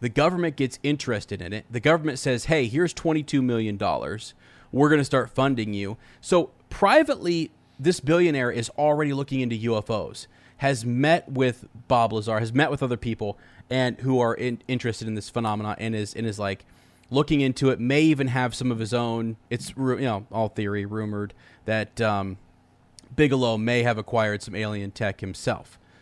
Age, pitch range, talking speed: 30-49, 105-130 Hz, 180 wpm